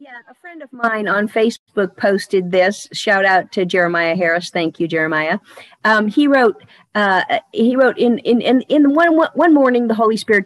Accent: American